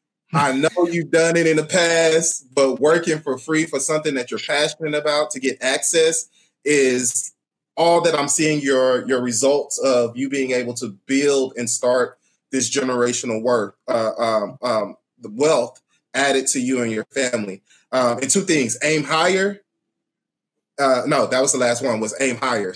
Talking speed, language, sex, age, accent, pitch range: 175 wpm, English, male, 20-39, American, 120-150 Hz